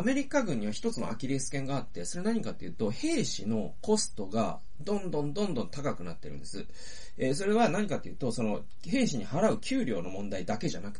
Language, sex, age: Japanese, male, 40-59